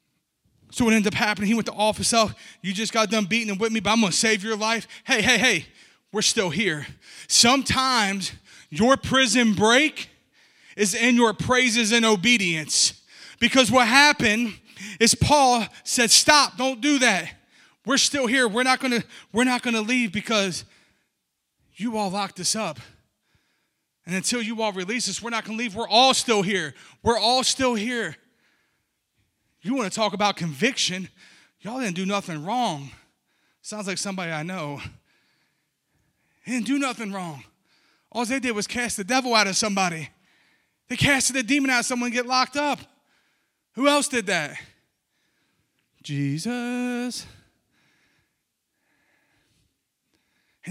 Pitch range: 195-245 Hz